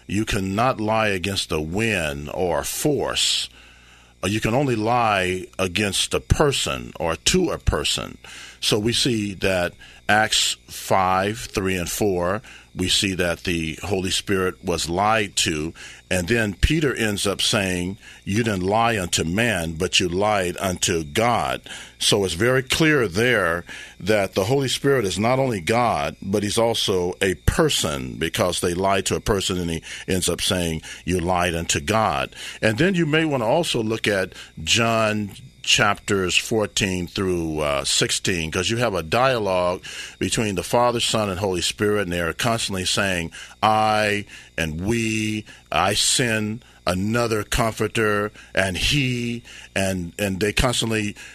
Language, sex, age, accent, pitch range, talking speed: English, male, 50-69, American, 90-115 Hz, 155 wpm